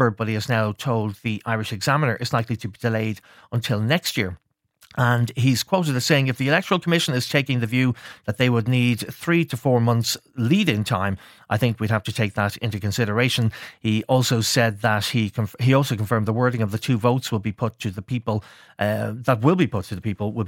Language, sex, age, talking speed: English, male, 30-49, 230 wpm